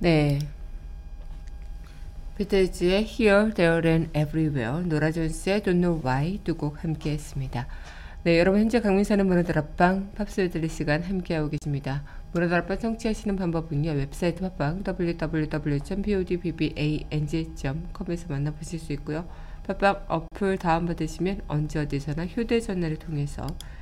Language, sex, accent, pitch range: Korean, female, native, 155-190 Hz